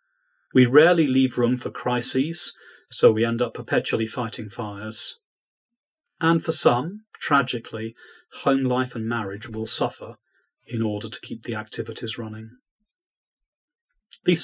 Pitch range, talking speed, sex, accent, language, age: 115-170 Hz, 130 wpm, male, British, English, 40-59